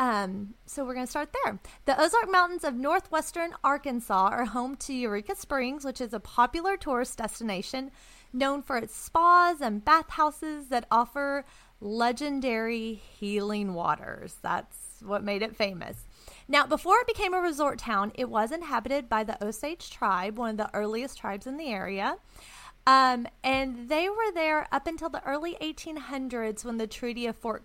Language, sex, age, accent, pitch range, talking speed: English, female, 30-49, American, 215-295 Hz, 165 wpm